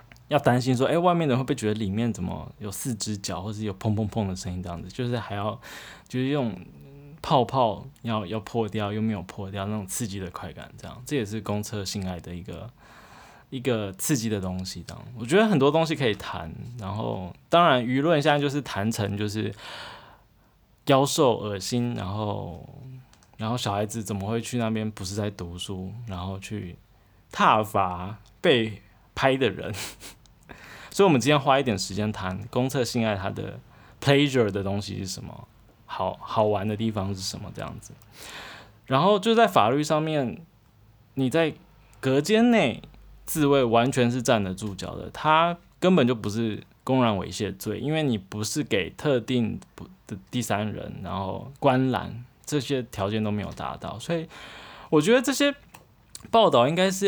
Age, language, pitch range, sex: 20-39, Chinese, 100-135 Hz, male